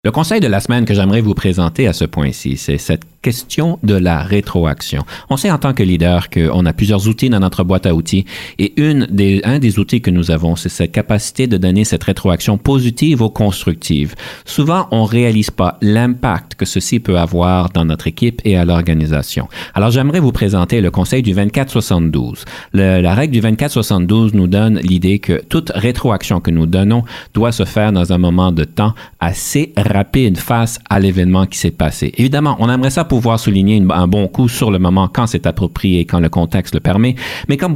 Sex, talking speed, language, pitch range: male, 205 wpm, French, 90-120 Hz